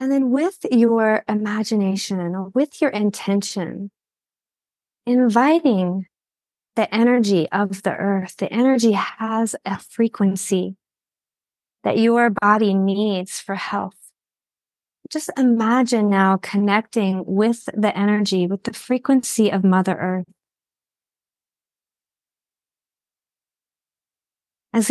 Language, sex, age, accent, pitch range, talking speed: English, female, 30-49, American, 195-235 Hz, 95 wpm